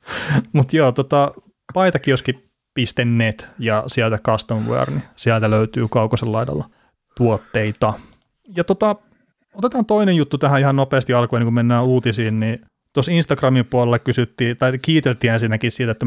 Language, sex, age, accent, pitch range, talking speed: Finnish, male, 30-49, native, 115-135 Hz, 135 wpm